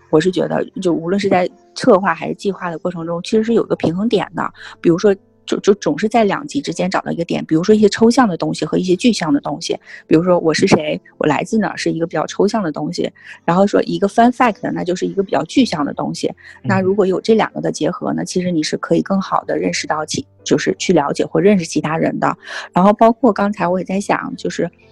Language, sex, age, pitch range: Chinese, female, 30-49, 165-210 Hz